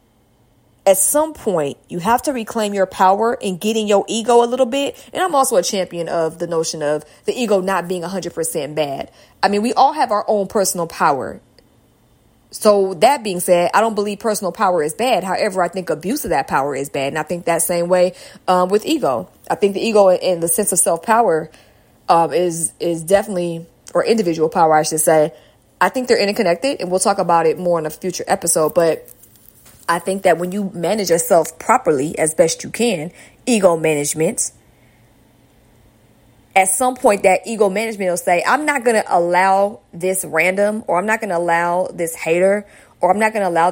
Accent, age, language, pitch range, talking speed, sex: American, 20-39, English, 165-205 Hz, 200 wpm, female